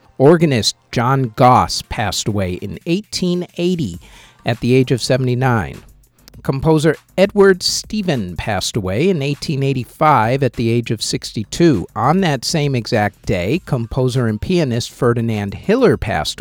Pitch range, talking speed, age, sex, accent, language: 115-165 Hz, 130 wpm, 50-69, male, American, English